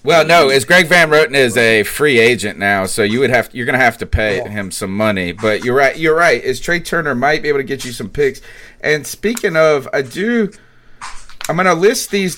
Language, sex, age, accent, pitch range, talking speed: English, male, 30-49, American, 110-145 Hz, 240 wpm